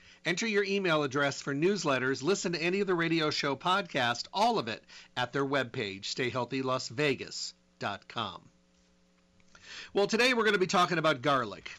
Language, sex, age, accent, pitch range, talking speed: English, male, 40-59, American, 120-155 Hz, 155 wpm